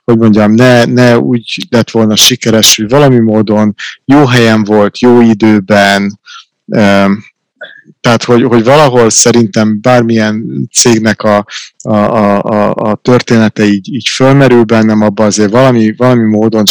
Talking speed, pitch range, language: 135 wpm, 105-120 Hz, Hungarian